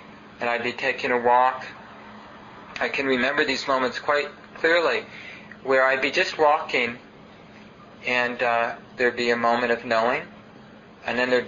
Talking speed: 150 wpm